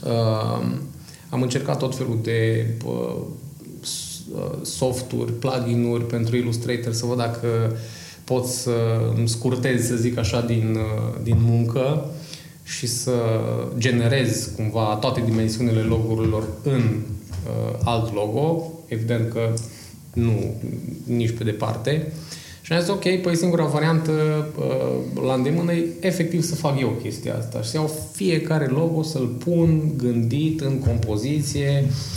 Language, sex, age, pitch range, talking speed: Romanian, male, 20-39, 110-140 Hz, 125 wpm